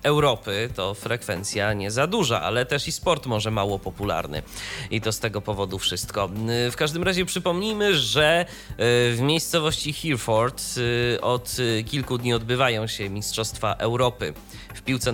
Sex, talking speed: male, 145 wpm